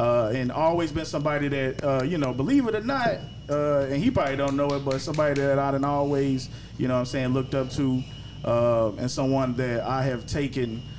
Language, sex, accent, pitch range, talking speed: English, male, American, 125-145 Hz, 225 wpm